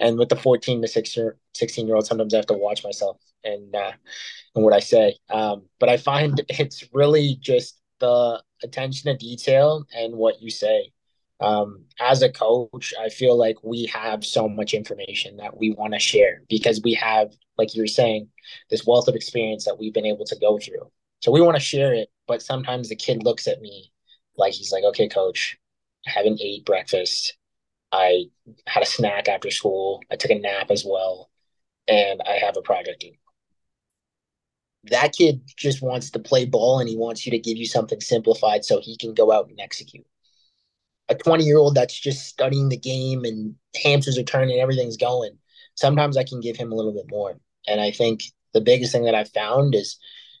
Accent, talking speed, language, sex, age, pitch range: American, 195 wpm, English, male, 20-39, 110-150 Hz